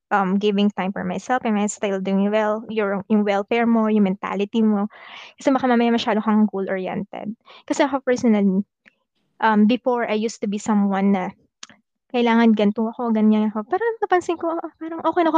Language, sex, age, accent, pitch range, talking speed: Filipino, female, 20-39, native, 215-265 Hz, 170 wpm